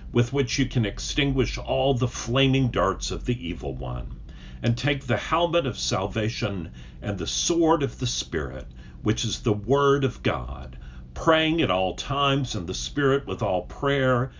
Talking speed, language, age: 170 wpm, English, 50-69